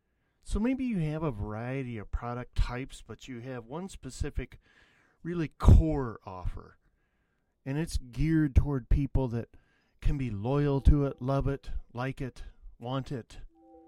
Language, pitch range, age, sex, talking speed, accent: English, 110-145 Hz, 40-59, male, 145 wpm, American